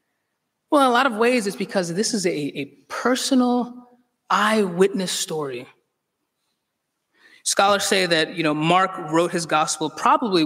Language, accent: English, American